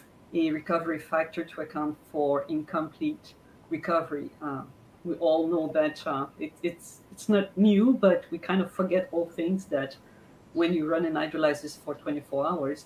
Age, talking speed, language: 40-59, 165 wpm, English